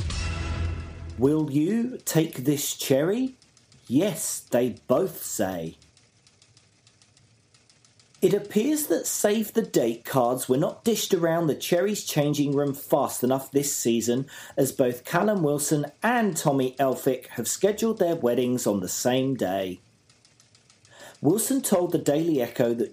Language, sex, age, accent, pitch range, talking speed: English, male, 40-59, British, 115-160 Hz, 130 wpm